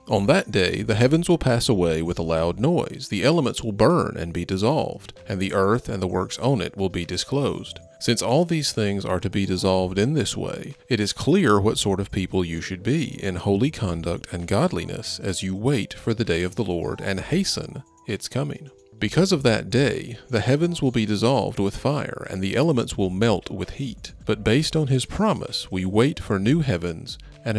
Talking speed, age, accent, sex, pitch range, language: 215 wpm, 40-59, American, male, 95-130 Hz, English